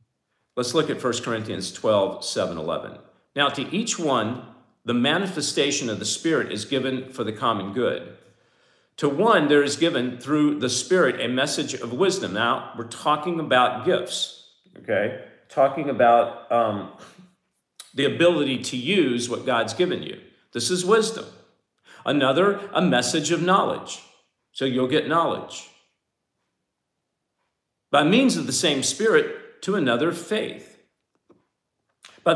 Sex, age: male, 50-69